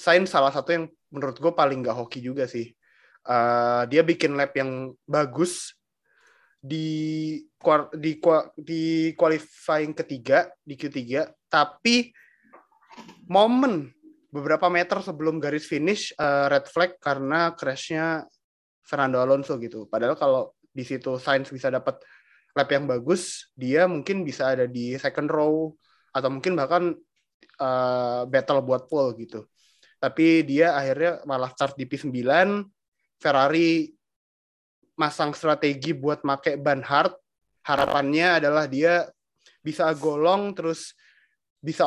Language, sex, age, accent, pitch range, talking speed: Indonesian, male, 20-39, native, 135-170 Hz, 125 wpm